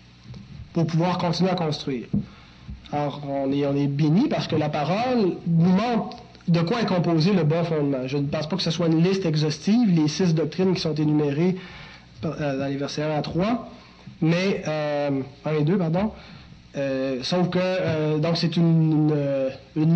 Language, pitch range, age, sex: French, 145-185 Hz, 30-49, male